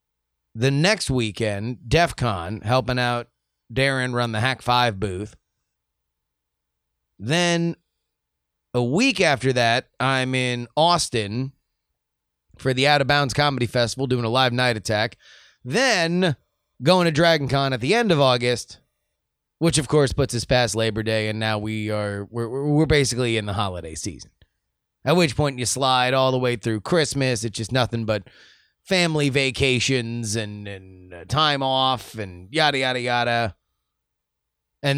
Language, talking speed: English, 145 wpm